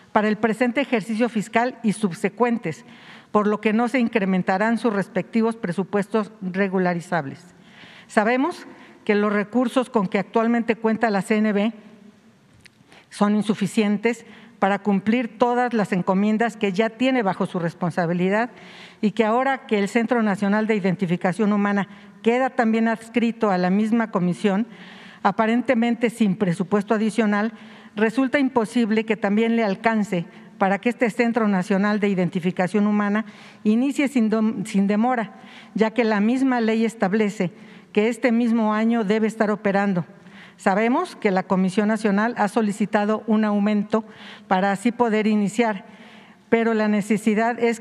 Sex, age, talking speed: female, 50-69, 135 wpm